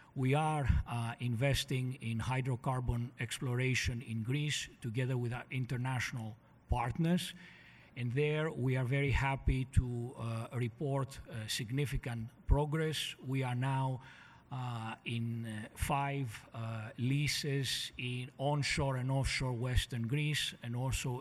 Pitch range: 120-135 Hz